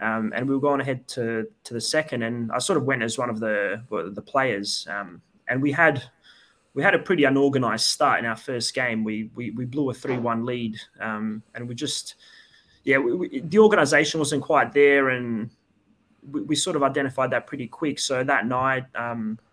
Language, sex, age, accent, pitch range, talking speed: English, male, 20-39, Australian, 115-135 Hz, 210 wpm